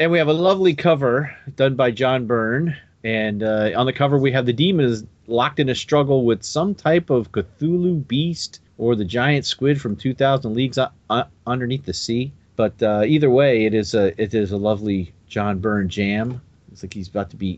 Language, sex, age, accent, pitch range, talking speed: English, male, 40-59, American, 100-150 Hz, 205 wpm